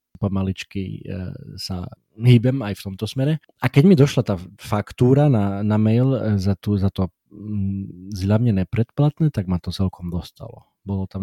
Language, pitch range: Slovak, 100-120 Hz